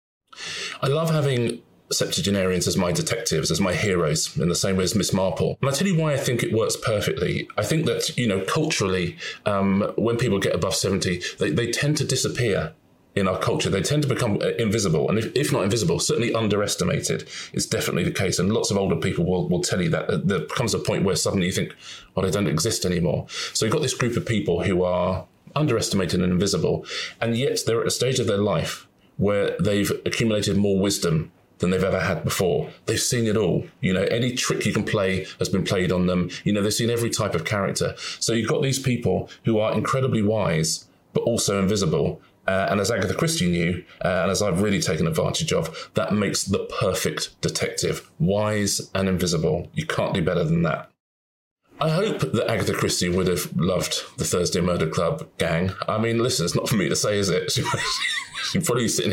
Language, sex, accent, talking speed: English, male, British, 210 wpm